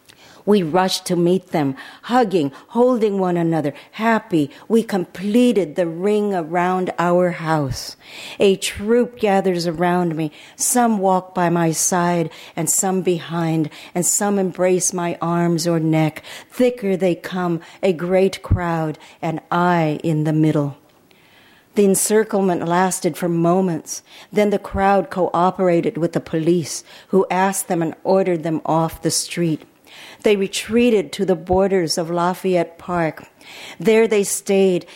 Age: 50-69